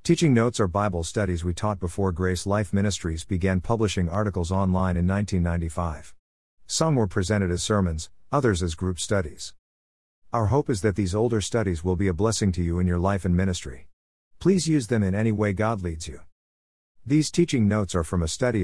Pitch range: 85-115 Hz